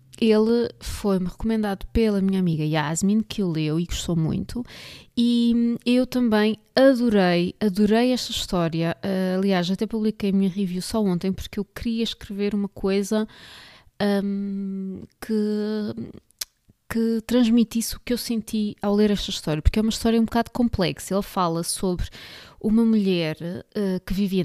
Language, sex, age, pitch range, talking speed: Portuguese, female, 20-39, 185-225 Hz, 150 wpm